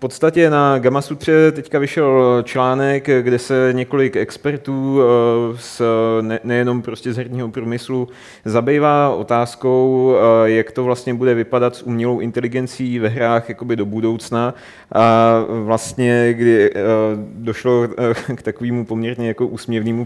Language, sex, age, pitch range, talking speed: Czech, male, 30-49, 110-125 Hz, 130 wpm